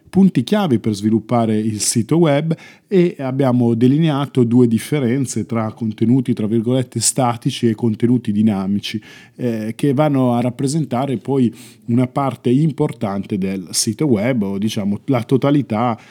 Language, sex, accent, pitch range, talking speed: Italian, male, native, 110-140 Hz, 135 wpm